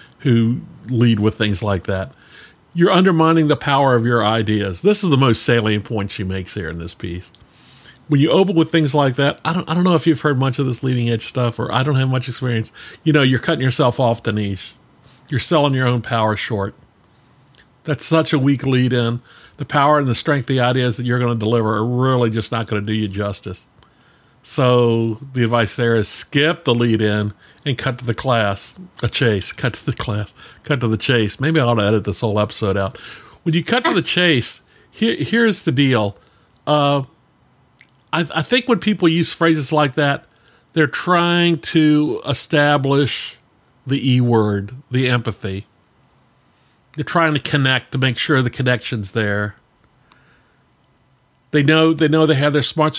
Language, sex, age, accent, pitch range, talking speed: English, male, 50-69, American, 115-150 Hz, 195 wpm